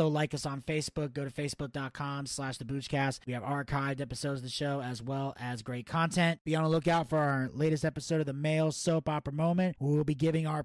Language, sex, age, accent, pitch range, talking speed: English, male, 30-49, American, 140-175 Hz, 225 wpm